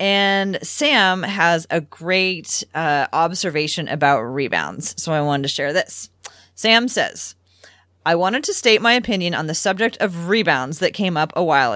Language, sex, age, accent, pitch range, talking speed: English, female, 30-49, American, 160-230 Hz, 170 wpm